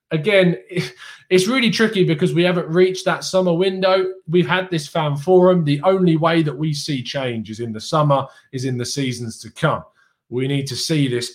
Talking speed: 200 wpm